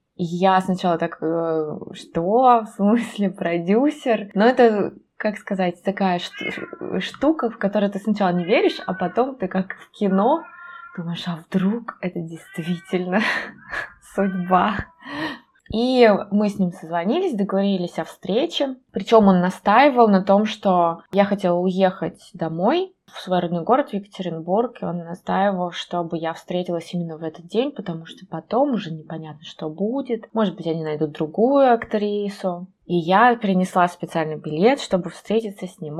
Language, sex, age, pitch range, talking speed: Russian, female, 20-39, 165-200 Hz, 150 wpm